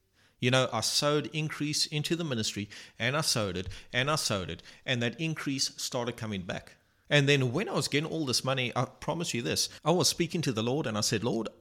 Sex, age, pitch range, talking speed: male, 30-49, 110-140 Hz, 235 wpm